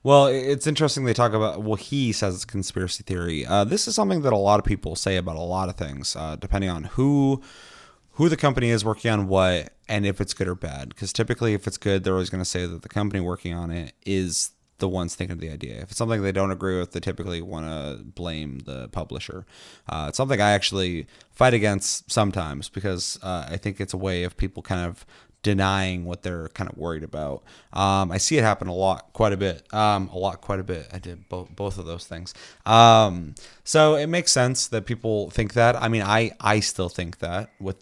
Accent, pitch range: American, 90-110 Hz